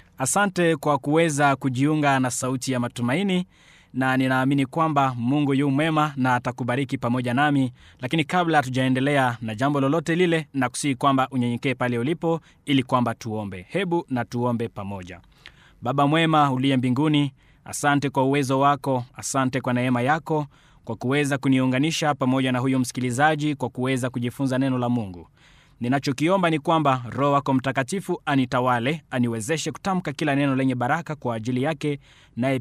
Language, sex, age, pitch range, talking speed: Swahili, male, 20-39, 125-150 Hz, 145 wpm